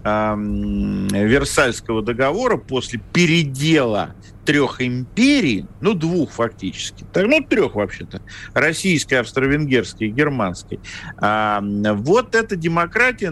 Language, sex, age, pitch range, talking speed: Russian, male, 50-69, 115-175 Hz, 80 wpm